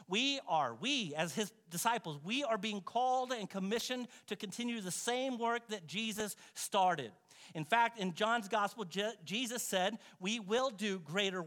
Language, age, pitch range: English, 50-69, 145-225 Hz